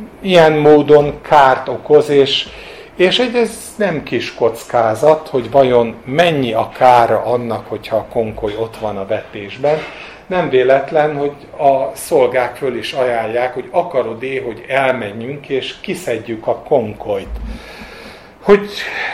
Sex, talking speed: male, 130 wpm